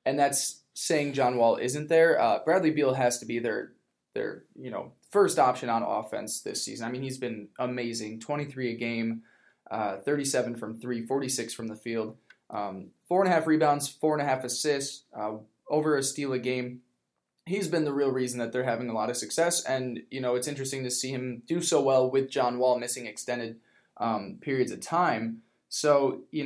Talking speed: 205 wpm